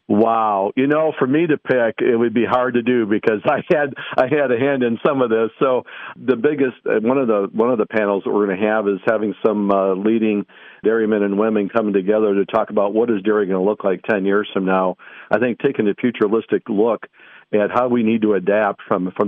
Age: 50-69